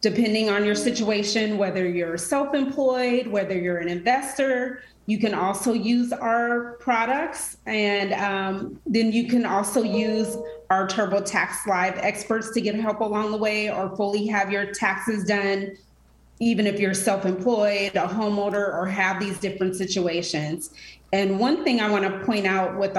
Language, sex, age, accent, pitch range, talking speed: English, female, 30-49, American, 185-215 Hz, 155 wpm